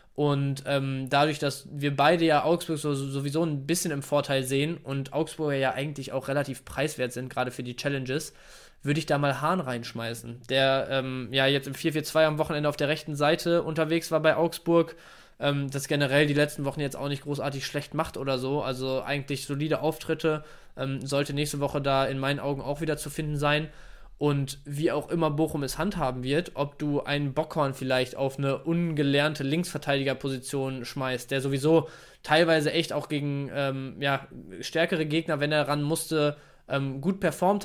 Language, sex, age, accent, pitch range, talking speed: German, male, 20-39, German, 140-155 Hz, 185 wpm